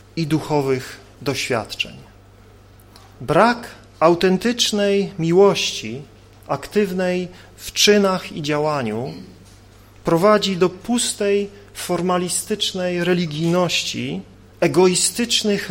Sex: male